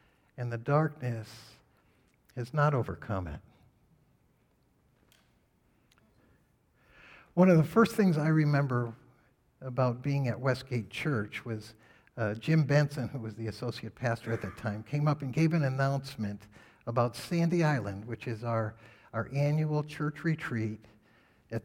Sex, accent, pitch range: male, American, 115-155 Hz